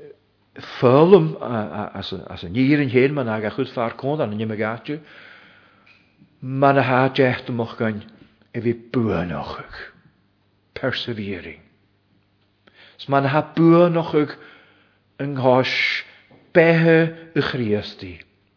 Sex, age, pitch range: male, 50-69, 100-130 Hz